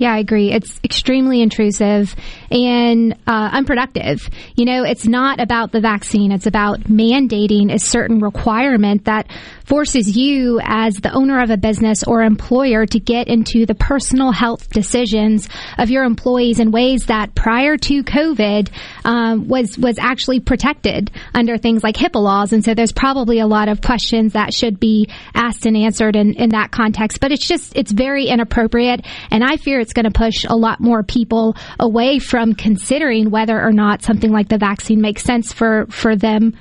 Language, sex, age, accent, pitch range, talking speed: English, female, 20-39, American, 220-245 Hz, 180 wpm